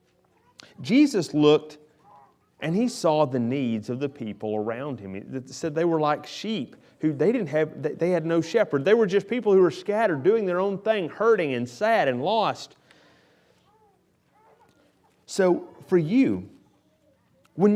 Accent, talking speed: American, 155 wpm